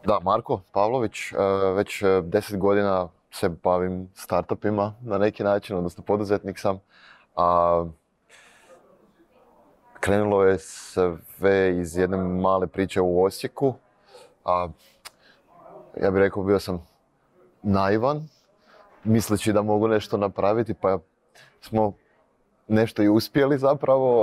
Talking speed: 100 wpm